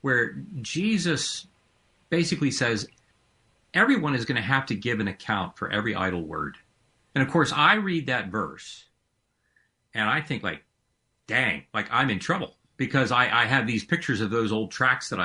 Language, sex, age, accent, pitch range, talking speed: English, male, 40-59, American, 105-140 Hz, 170 wpm